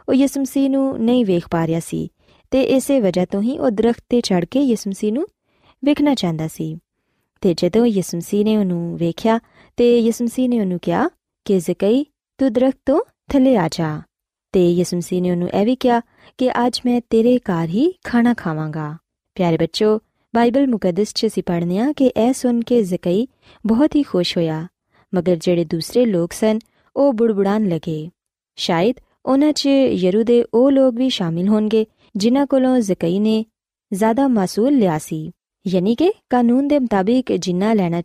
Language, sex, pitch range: Punjabi, female, 180-250 Hz